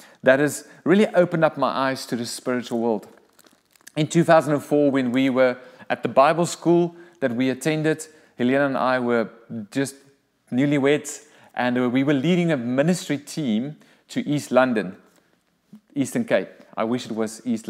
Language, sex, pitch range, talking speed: English, male, 125-155 Hz, 155 wpm